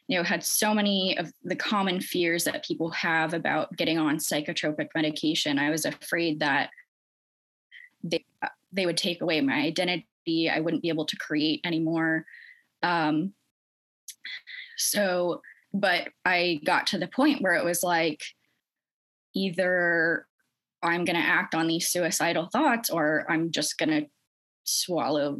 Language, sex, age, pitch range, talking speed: English, female, 20-39, 165-205 Hz, 145 wpm